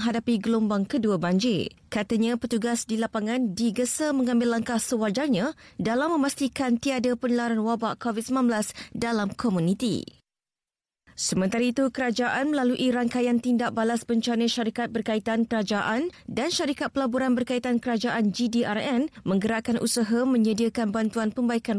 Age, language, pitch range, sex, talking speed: 20-39, Malay, 220-260 Hz, female, 115 wpm